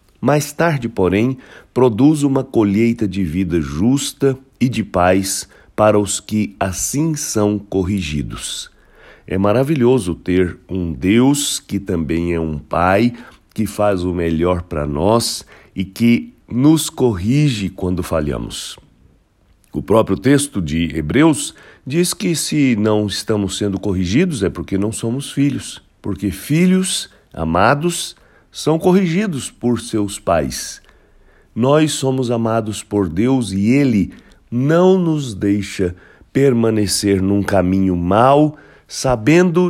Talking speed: 120 wpm